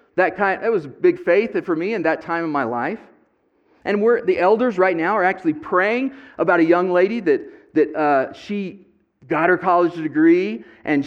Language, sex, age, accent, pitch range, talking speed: English, male, 40-59, American, 150-245 Hz, 200 wpm